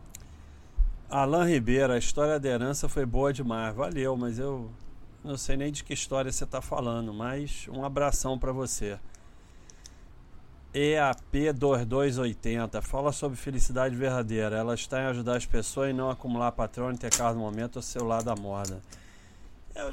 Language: Portuguese